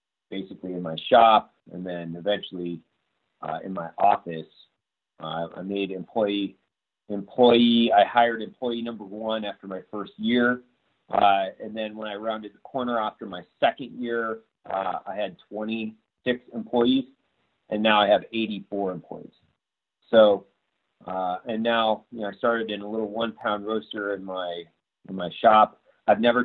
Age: 30-49